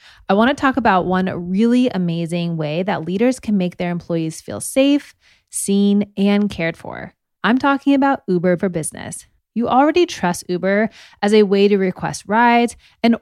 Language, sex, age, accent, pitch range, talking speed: English, female, 20-39, American, 185-245 Hz, 175 wpm